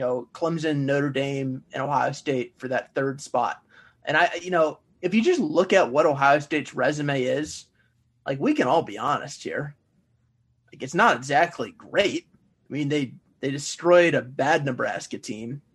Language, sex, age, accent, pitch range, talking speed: English, male, 20-39, American, 130-170 Hz, 175 wpm